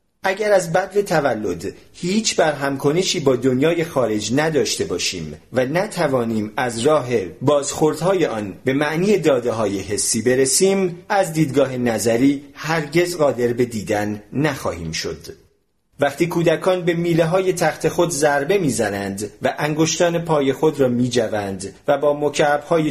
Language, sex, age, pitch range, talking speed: Persian, male, 40-59, 120-160 Hz, 135 wpm